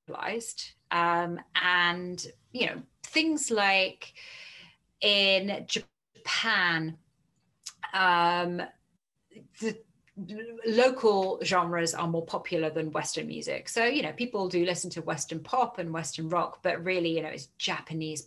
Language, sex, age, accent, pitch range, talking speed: English, female, 30-49, British, 165-200 Hz, 120 wpm